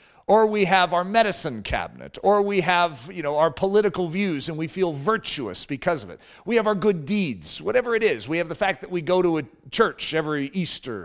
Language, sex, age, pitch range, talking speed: English, male, 40-59, 135-195 Hz, 225 wpm